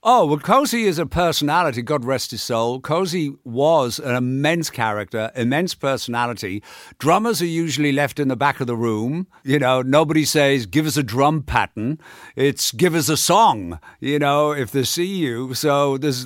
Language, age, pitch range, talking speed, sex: English, 50-69, 115-150 Hz, 180 wpm, male